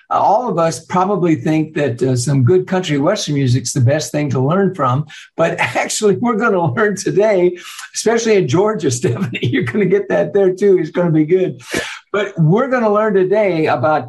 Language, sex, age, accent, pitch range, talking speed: English, male, 60-79, American, 145-195 Hz, 210 wpm